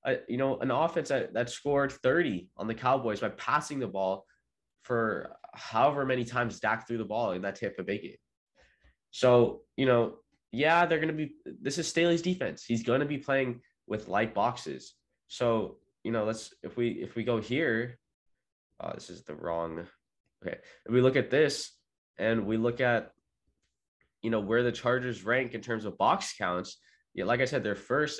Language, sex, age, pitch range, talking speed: English, male, 20-39, 95-120 Hz, 190 wpm